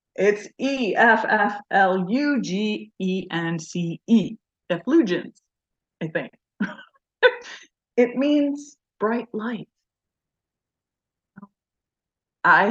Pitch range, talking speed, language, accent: 160-195 Hz, 45 wpm, English, American